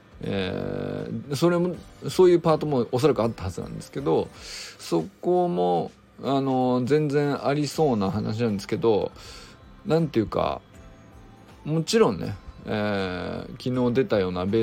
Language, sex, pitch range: Japanese, male, 100-140 Hz